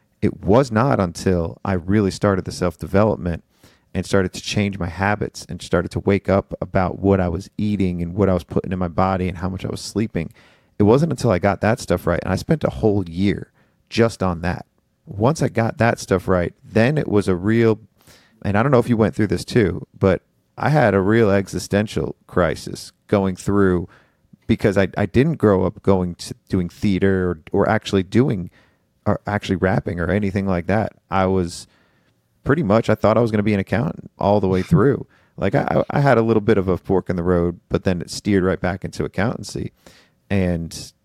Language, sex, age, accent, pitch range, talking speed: English, male, 40-59, American, 90-105 Hz, 215 wpm